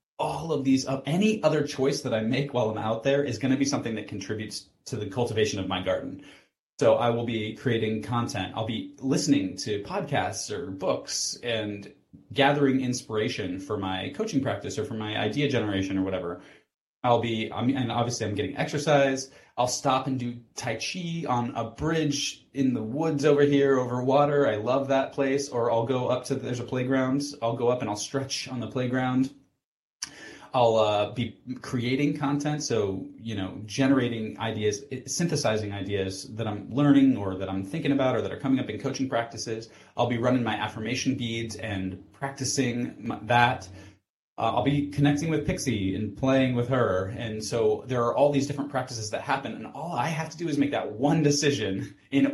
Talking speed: 195 wpm